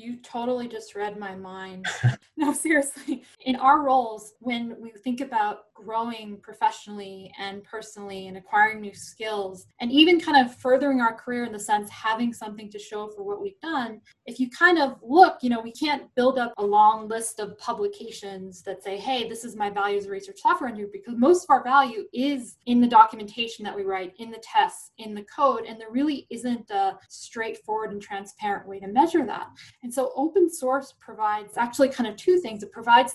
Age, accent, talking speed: 10-29, American, 205 wpm